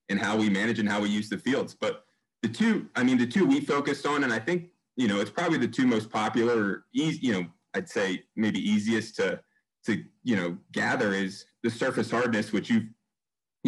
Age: 30-49